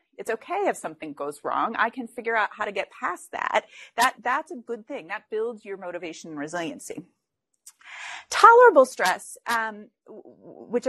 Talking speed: 165 wpm